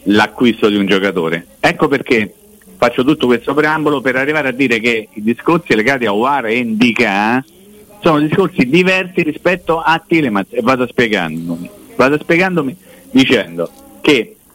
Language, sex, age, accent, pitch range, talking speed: Italian, male, 50-69, native, 110-160 Hz, 145 wpm